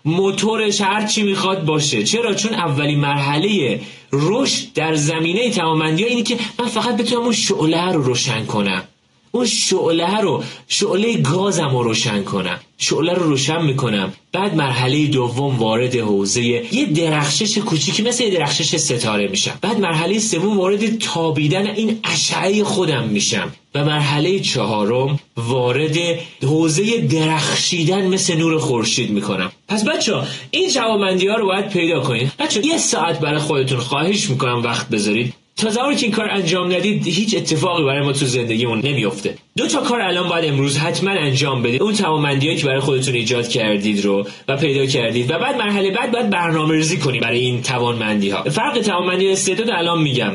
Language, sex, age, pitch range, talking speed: Persian, male, 30-49, 130-195 Hz, 155 wpm